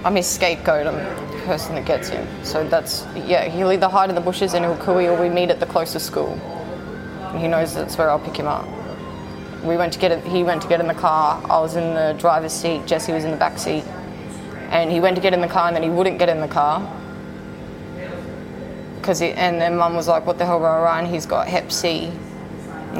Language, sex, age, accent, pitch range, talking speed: English, female, 20-39, Australian, 160-175 Hz, 240 wpm